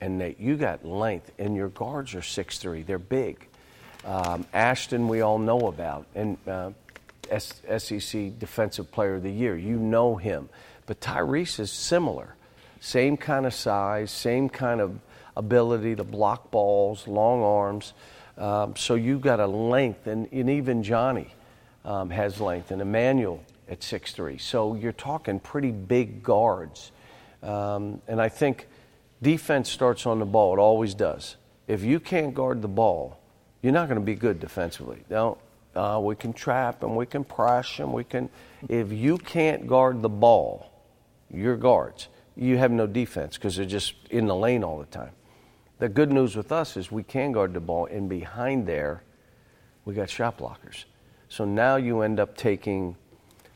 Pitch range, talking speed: 100-125 Hz, 170 wpm